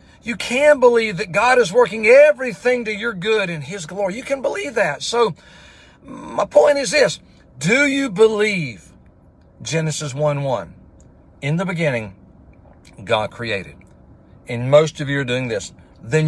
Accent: American